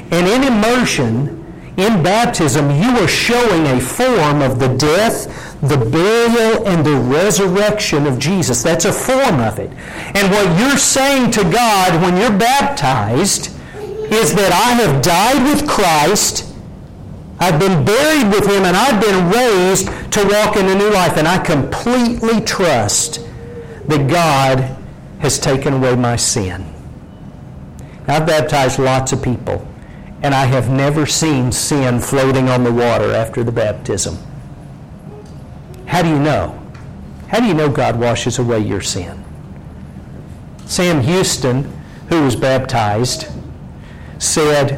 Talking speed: 140 wpm